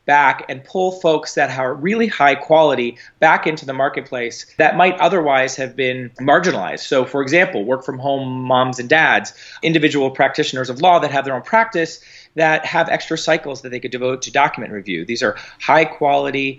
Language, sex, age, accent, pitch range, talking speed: English, male, 30-49, American, 135-165 Hz, 190 wpm